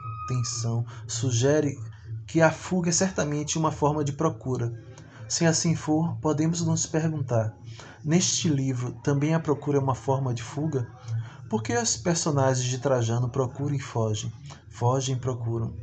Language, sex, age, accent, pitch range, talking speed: Portuguese, male, 20-39, Brazilian, 115-145 Hz, 150 wpm